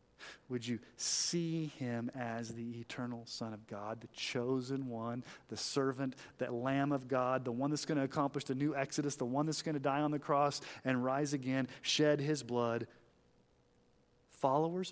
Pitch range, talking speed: 85-135 Hz, 175 wpm